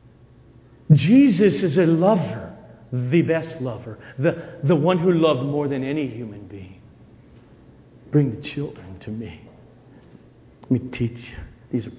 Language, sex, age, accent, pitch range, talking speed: English, male, 50-69, American, 125-205 Hz, 140 wpm